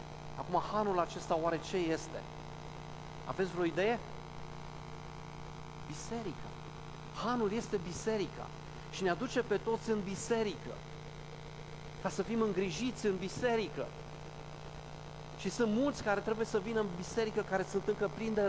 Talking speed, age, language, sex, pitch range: 125 wpm, 40-59, Romanian, male, 155-205 Hz